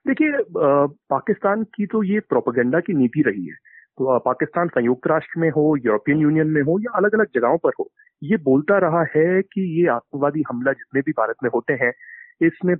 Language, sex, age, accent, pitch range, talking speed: Hindi, male, 30-49, native, 140-210 Hz, 190 wpm